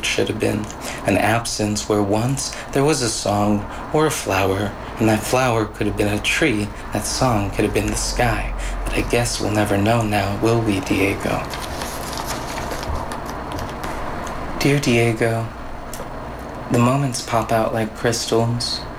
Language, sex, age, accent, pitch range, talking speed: English, male, 30-49, American, 105-120 Hz, 150 wpm